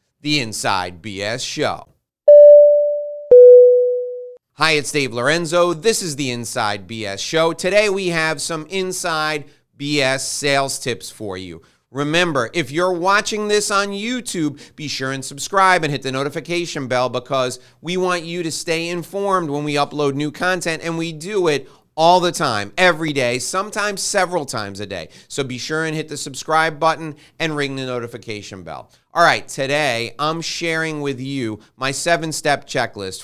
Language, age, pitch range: English, 30-49, 125-170 Hz